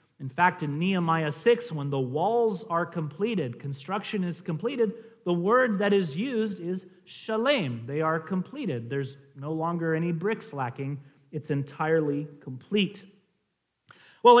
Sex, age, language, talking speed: male, 40-59, English, 135 wpm